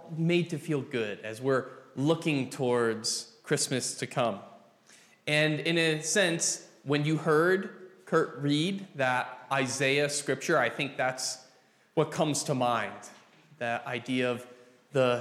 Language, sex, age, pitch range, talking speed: English, male, 20-39, 125-170 Hz, 135 wpm